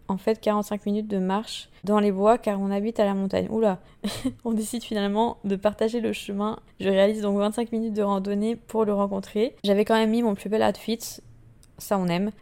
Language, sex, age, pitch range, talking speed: French, female, 20-39, 200-225 Hz, 215 wpm